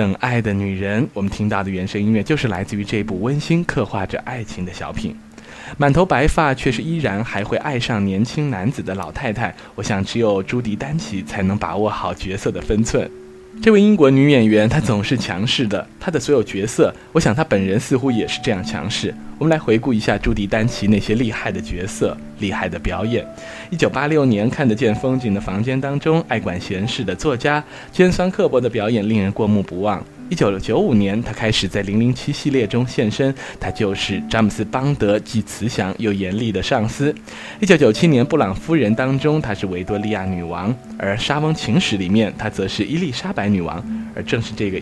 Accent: native